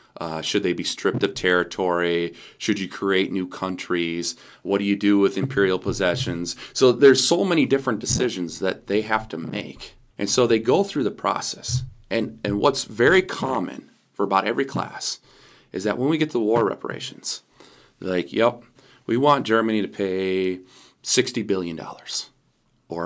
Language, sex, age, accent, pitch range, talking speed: English, male, 30-49, American, 95-130 Hz, 165 wpm